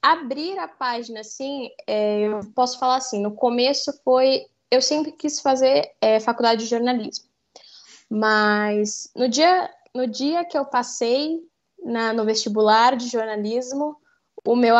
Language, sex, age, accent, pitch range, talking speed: Portuguese, female, 10-29, Brazilian, 230-275 Hz, 125 wpm